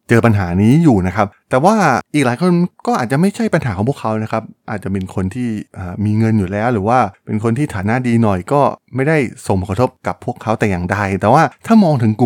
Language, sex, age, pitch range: Thai, male, 20-39, 100-130 Hz